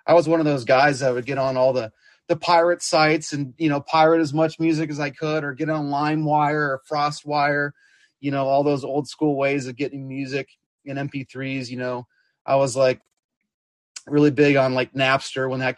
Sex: male